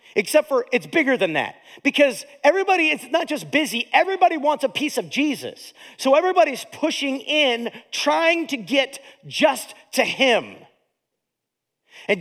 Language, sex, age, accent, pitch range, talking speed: English, male, 40-59, American, 165-270 Hz, 145 wpm